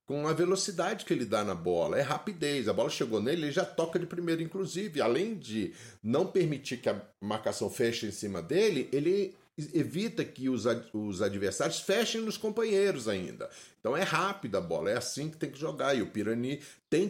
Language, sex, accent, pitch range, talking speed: Portuguese, male, Brazilian, 105-170 Hz, 195 wpm